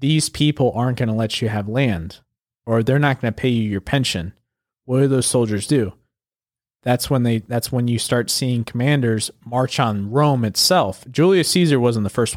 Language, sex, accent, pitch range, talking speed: English, male, American, 110-130 Hz, 200 wpm